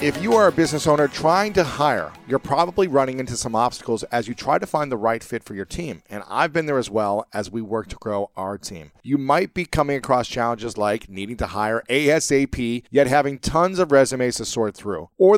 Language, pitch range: English, 115-155 Hz